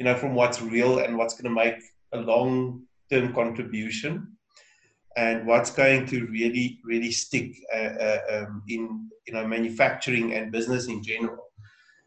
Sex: male